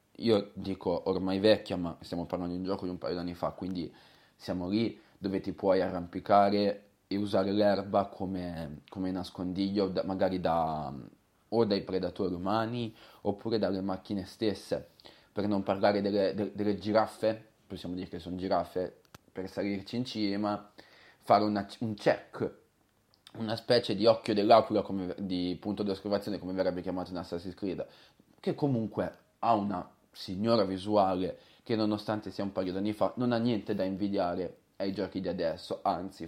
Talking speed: 165 wpm